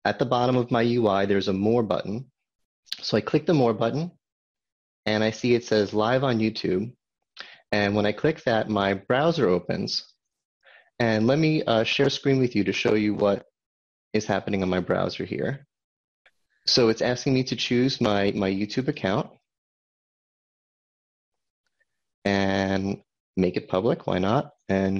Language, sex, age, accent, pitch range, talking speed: English, male, 30-49, American, 100-125 Hz, 165 wpm